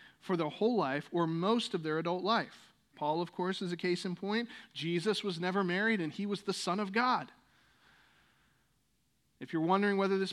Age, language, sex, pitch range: 40-59, English, male, 145-185 Hz